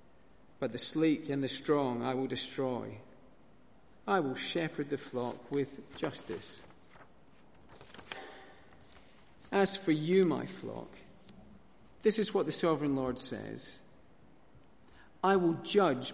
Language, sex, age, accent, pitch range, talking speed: English, male, 40-59, British, 135-185 Hz, 115 wpm